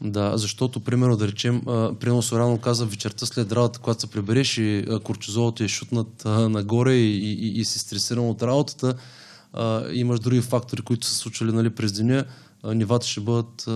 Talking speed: 190 wpm